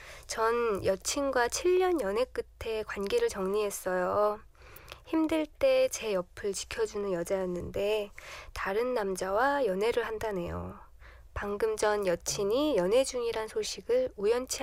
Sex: female